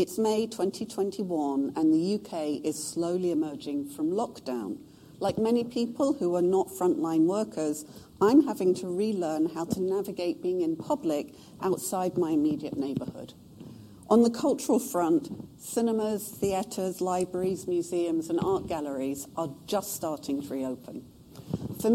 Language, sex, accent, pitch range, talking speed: English, female, British, 165-270 Hz, 135 wpm